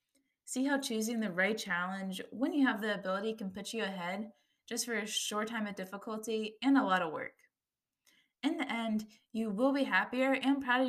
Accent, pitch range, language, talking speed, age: American, 195-255 Hz, English, 205 wpm, 20-39